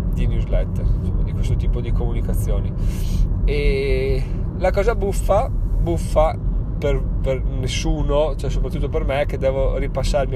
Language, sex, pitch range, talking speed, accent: Italian, male, 95-130 Hz, 135 wpm, native